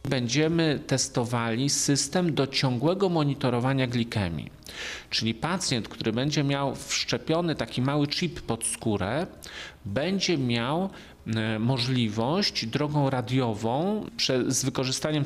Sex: male